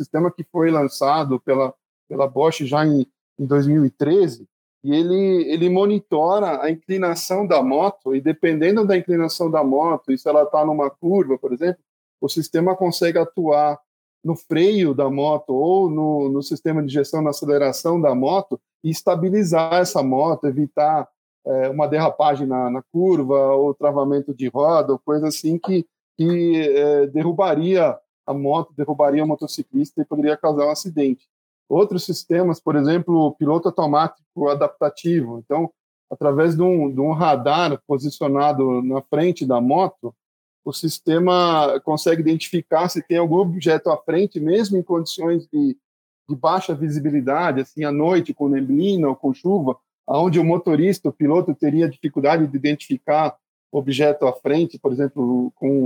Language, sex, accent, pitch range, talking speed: Portuguese, male, Brazilian, 145-175 Hz, 155 wpm